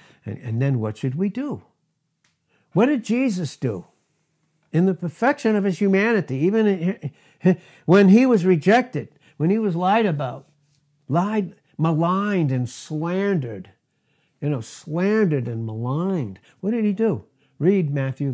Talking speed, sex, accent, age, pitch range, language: 140 wpm, male, American, 60-79, 130-190 Hz, English